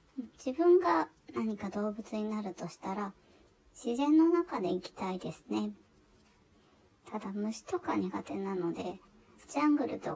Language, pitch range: Japanese, 185-300 Hz